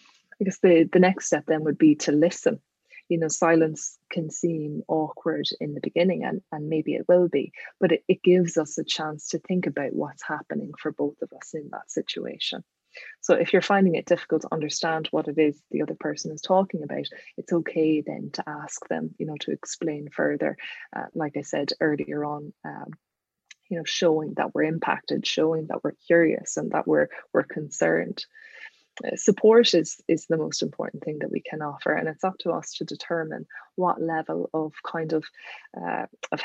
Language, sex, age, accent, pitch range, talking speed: English, female, 20-39, Irish, 155-185 Hz, 195 wpm